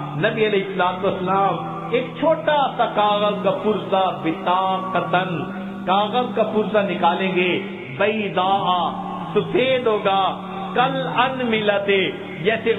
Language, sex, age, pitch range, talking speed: Urdu, male, 50-69, 180-215 Hz, 100 wpm